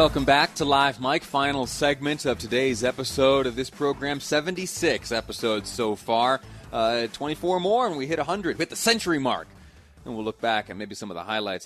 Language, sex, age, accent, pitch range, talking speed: English, male, 30-49, American, 105-130 Hz, 195 wpm